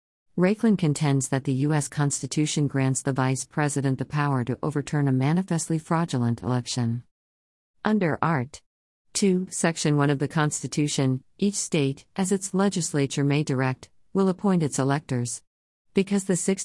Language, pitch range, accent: English, 130-170 Hz, American